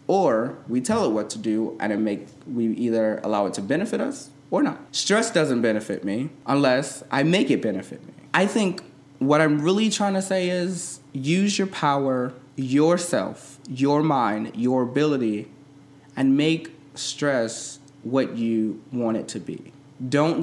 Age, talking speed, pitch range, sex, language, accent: 20-39, 165 wpm, 120-145 Hz, male, English, American